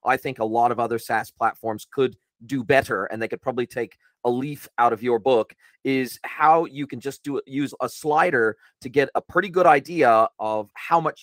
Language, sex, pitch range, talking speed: English, male, 115-135 Hz, 215 wpm